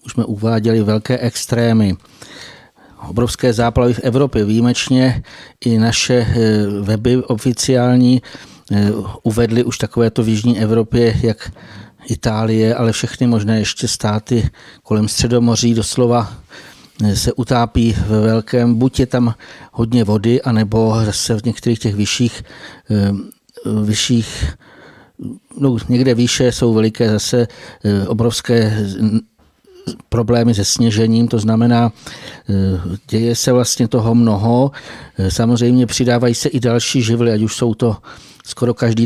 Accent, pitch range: native, 110-125 Hz